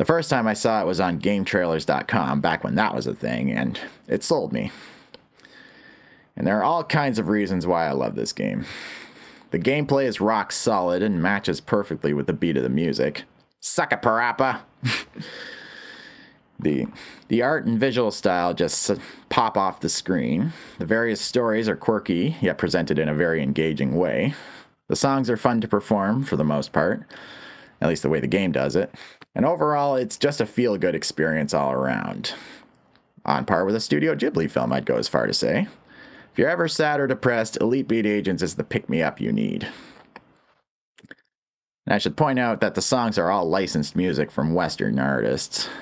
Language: English